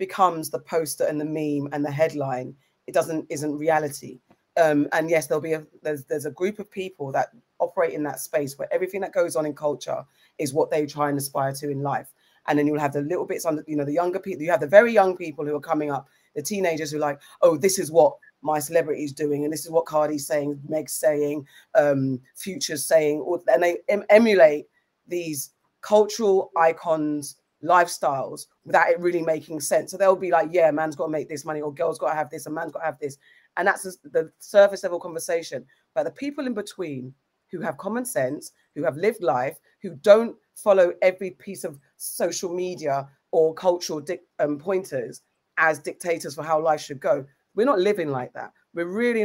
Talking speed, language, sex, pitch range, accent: 215 wpm, English, female, 150-185 Hz, British